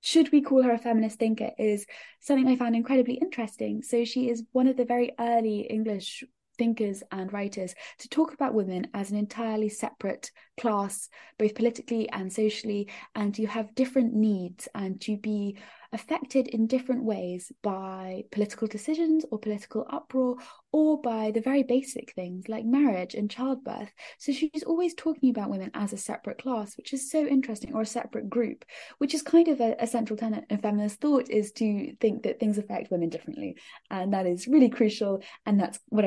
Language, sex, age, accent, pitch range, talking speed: English, female, 20-39, British, 200-250 Hz, 185 wpm